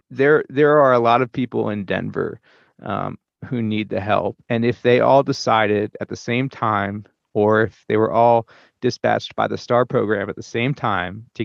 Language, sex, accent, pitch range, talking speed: English, male, American, 105-120 Hz, 200 wpm